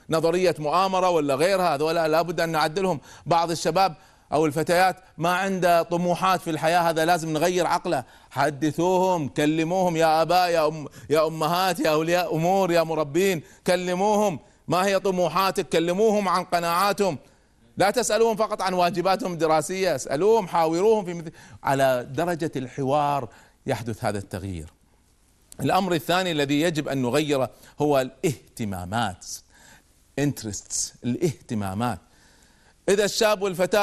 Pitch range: 140-180 Hz